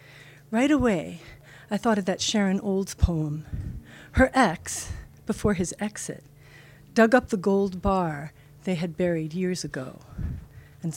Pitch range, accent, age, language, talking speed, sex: 145-195 Hz, American, 50-69, English, 135 wpm, female